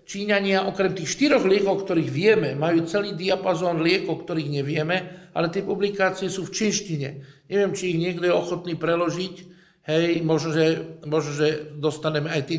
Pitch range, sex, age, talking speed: 160-205 Hz, male, 50-69, 165 wpm